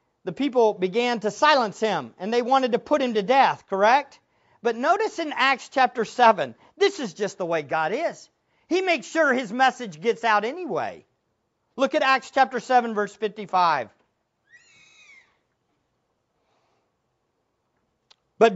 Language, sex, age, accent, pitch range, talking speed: English, male, 50-69, American, 220-320 Hz, 140 wpm